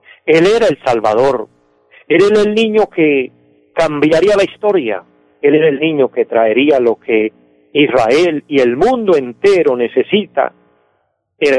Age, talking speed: 50-69, 140 wpm